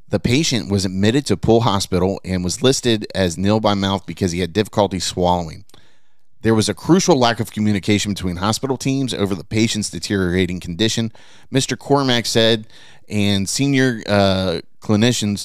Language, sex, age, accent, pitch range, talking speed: English, male, 30-49, American, 95-120 Hz, 160 wpm